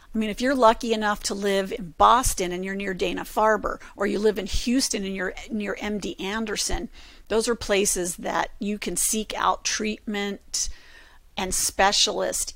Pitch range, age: 195-235 Hz, 50-69